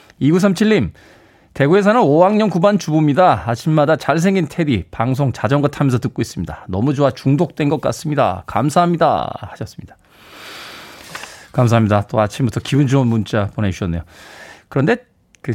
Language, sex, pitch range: Korean, male, 110-160 Hz